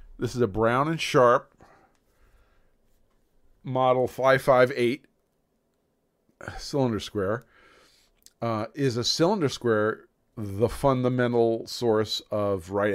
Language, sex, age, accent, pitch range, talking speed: English, male, 40-59, American, 100-135 Hz, 100 wpm